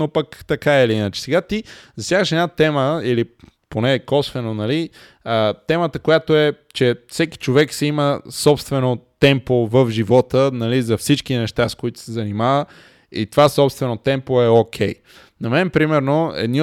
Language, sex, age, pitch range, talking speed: Bulgarian, male, 20-39, 125-160 Hz, 165 wpm